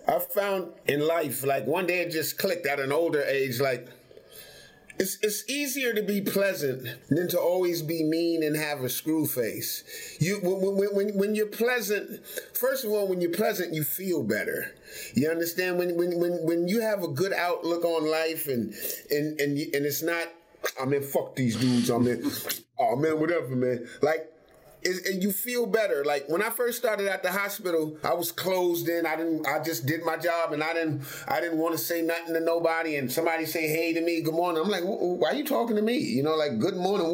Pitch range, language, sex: 160-220 Hz, English, male